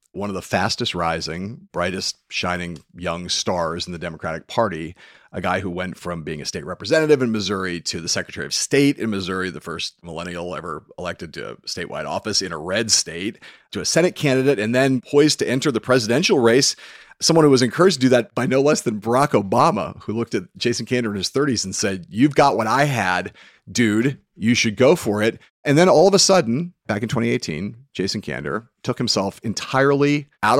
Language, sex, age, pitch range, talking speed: English, male, 40-59, 95-130 Hz, 205 wpm